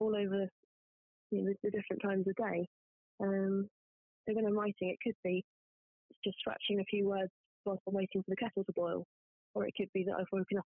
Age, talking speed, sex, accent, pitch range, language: 20-39, 215 wpm, female, British, 190-210 Hz, English